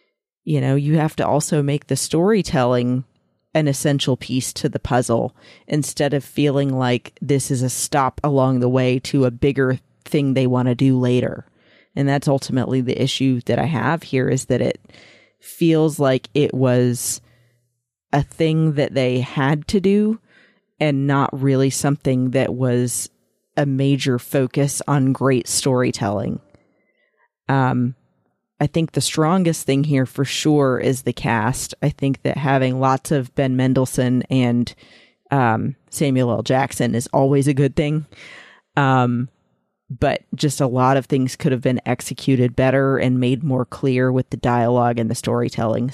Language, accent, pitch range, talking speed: English, American, 125-140 Hz, 160 wpm